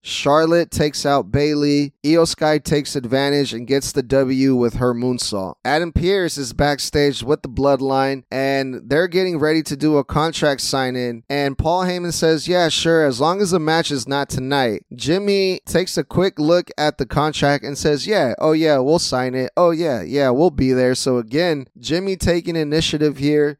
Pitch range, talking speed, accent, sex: 130-160 Hz, 185 wpm, American, male